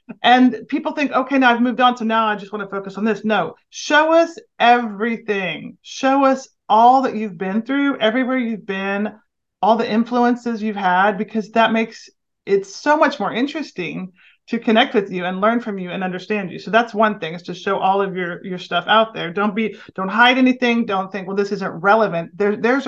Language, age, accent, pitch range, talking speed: English, 30-49, American, 195-245 Hz, 210 wpm